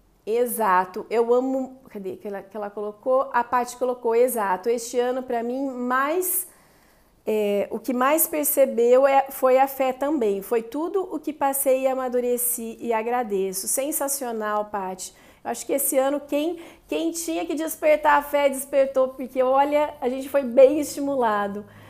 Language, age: Portuguese, 40-59